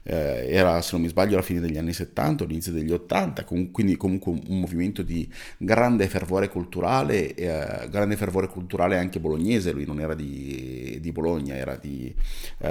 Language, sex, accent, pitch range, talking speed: Italian, male, native, 85-110 Hz, 170 wpm